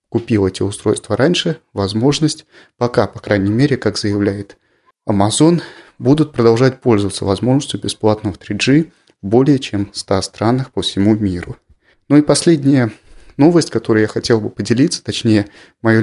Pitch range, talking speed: 105-130 Hz, 140 wpm